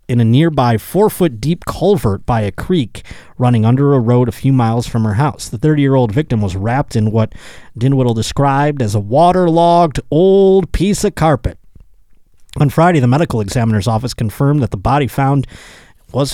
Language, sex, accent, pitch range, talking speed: English, male, American, 105-145 Hz, 170 wpm